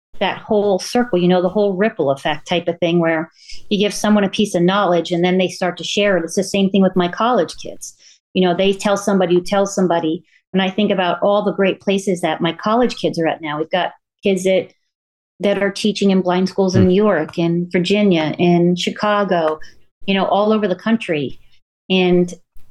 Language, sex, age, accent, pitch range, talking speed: English, female, 40-59, American, 170-200 Hz, 215 wpm